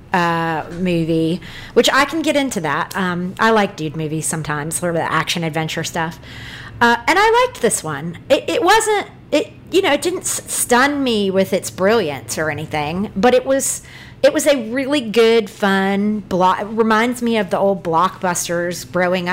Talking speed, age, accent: 180 wpm, 30-49, American